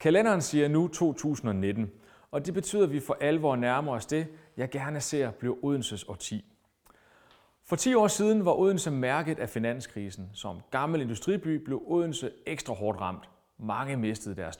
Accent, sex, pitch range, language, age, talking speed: native, male, 110-170 Hz, Danish, 30-49, 165 wpm